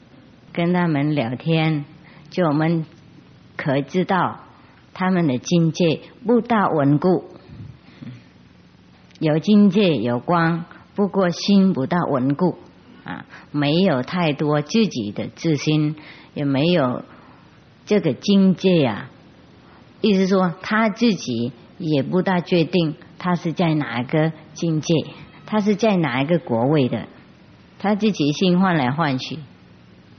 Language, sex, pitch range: English, male, 140-185 Hz